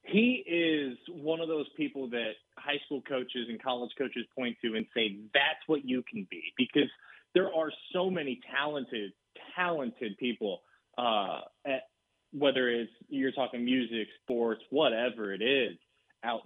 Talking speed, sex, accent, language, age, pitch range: 155 wpm, male, American, English, 20-39, 115-140 Hz